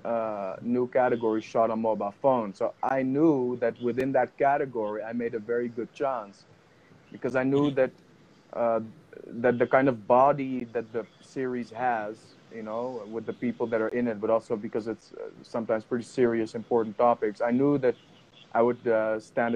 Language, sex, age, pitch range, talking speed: Tamil, male, 30-49, 110-130 Hz, 180 wpm